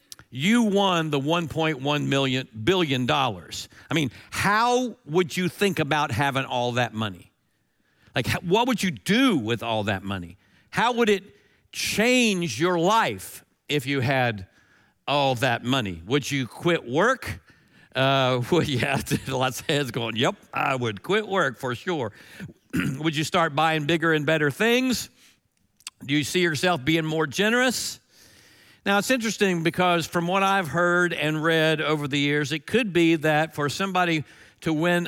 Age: 50-69